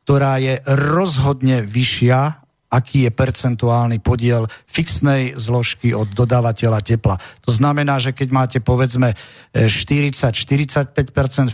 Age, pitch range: 50-69, 120-135 Hz